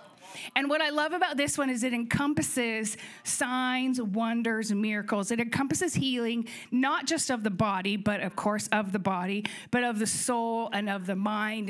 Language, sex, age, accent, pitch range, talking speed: English, female, 40-59, American, 205-260 Hz, 180 wpm